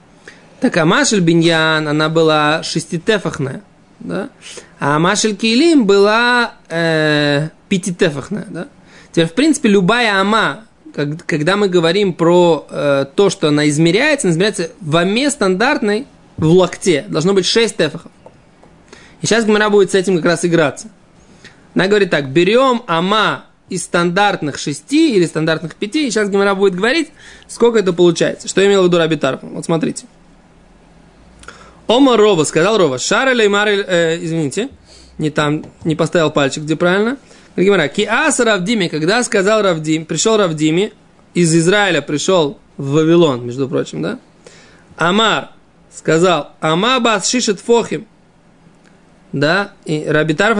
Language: Russian